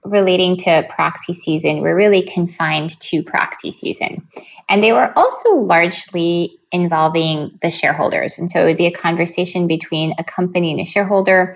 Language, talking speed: English, 160 wpm